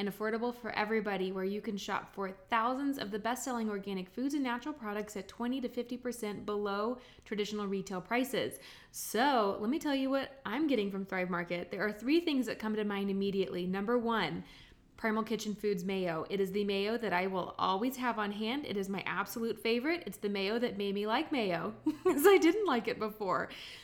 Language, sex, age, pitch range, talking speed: English, female, 20-39, 200-250 Hz, 205 wpm